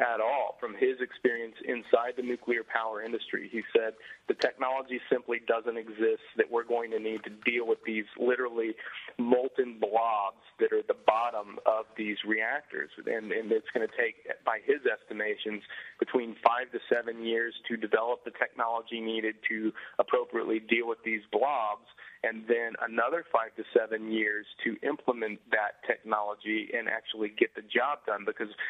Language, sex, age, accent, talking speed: English, male, 40-59, American, 165 wpm